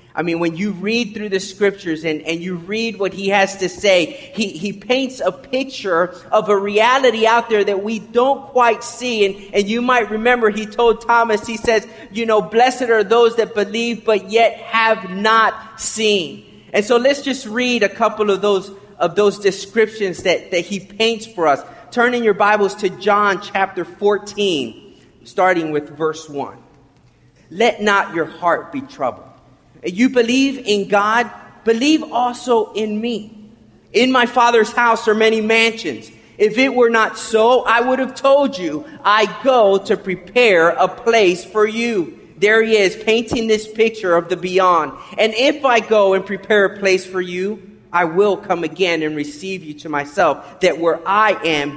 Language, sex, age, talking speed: English, male, 30-49, 180 wpm